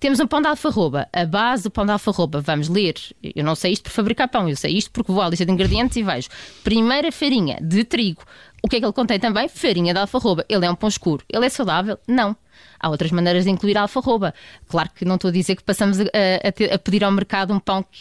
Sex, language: female, Portuguese